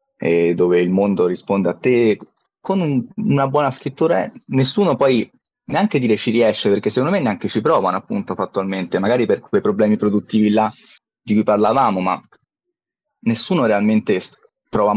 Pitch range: 100-135 Hz